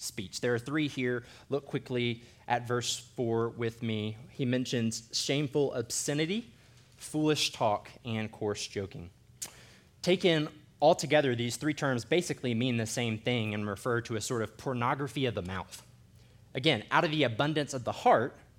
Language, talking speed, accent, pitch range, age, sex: English, 160 wpm, American, 115-145 Hz, 20-39, male